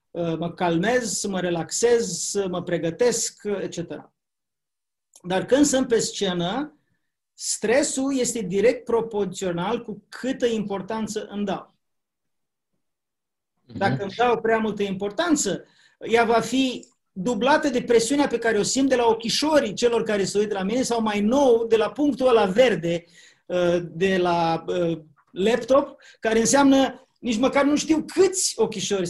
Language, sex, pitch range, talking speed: Romanian, male, 185-240 Hz, 135 wpm